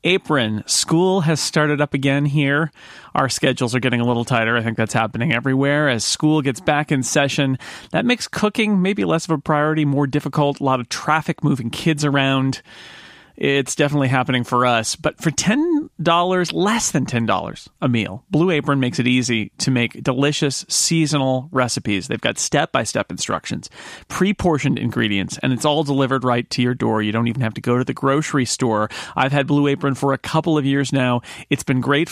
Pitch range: 120-150 Hz